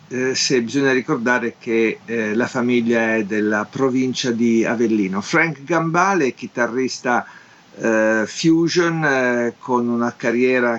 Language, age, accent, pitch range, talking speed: Italian, 50-69, native, 120-155 Hz, 115 wpm